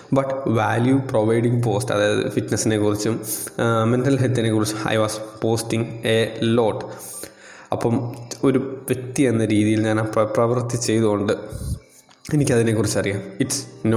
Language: Malayalam